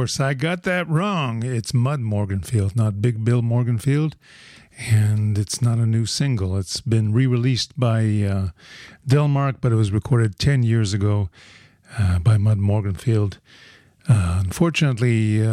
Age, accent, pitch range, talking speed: 50-69, American, 110-130 Hz, 140 wpm